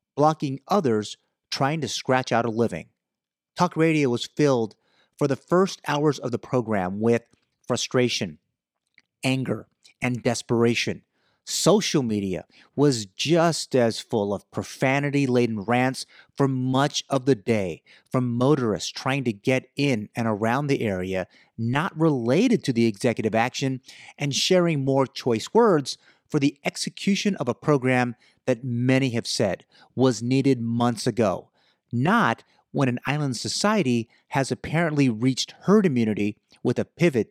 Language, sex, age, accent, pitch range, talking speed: English, male, 30-49, American, 115-145 Hz, 140 wpm